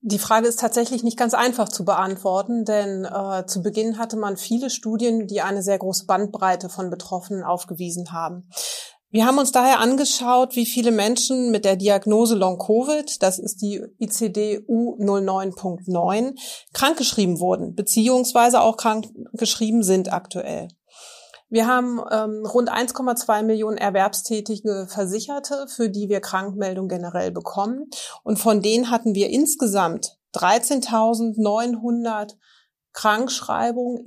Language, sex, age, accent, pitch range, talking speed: German, female, 30-49, German, 195-235 Hz, 130 wpm